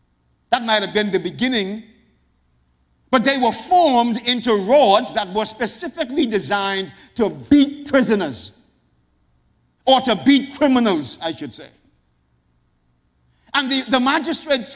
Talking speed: 120 wpm